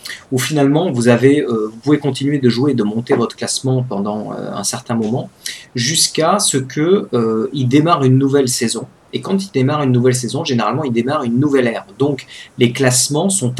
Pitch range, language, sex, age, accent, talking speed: 120-145 Hz, French, male, 40-59, French, 200 wpm